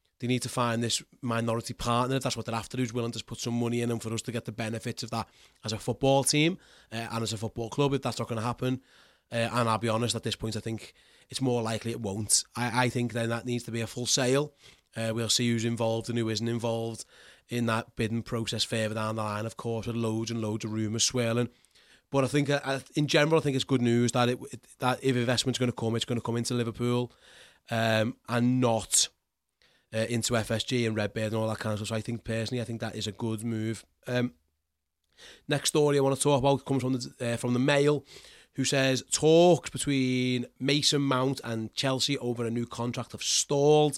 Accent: British